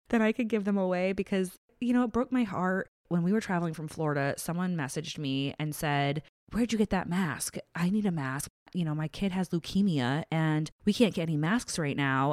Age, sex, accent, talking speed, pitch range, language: 20-39, female, American, 230 wpm, 145-185 Hz, English